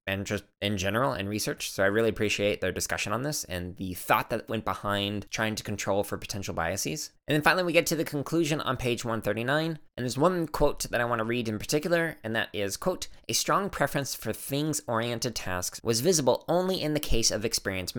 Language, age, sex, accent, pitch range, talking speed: English, 20-39, male, American, 105-145 Hz, 215 wpm